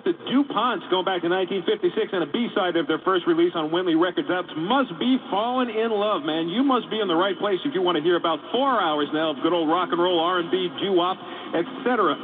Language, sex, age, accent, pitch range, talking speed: English, male, 40-59, American, 170-240 Hz, 240 wpm